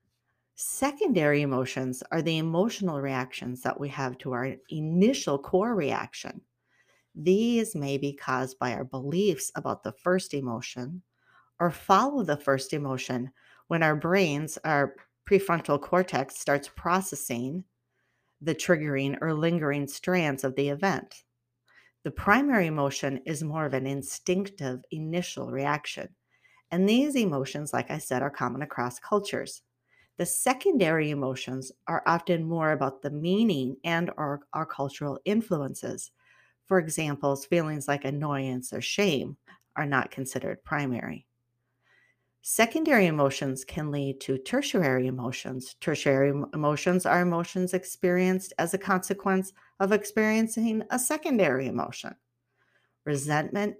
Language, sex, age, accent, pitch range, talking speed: English, female, 40-59, American, 130-185 Hz, 125 wpm